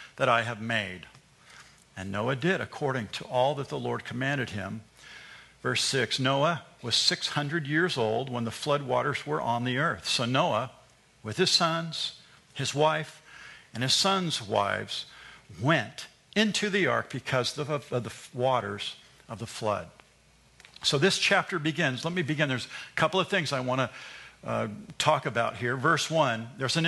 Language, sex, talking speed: English, male, 165 wpm